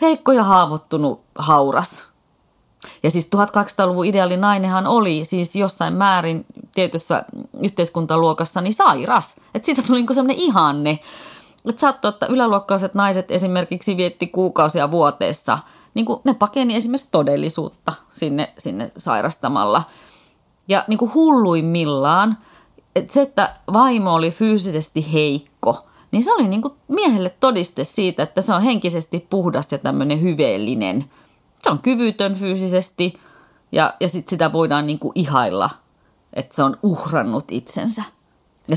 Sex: female